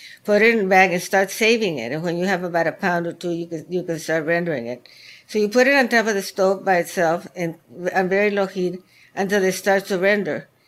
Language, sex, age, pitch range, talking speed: English, female, 60-79, 170-195 Hz, 260 wpm